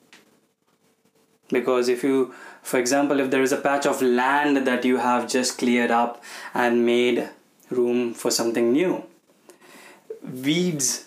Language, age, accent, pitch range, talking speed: Hindi, 20-39, native, 125-165 Hz, 135 wpm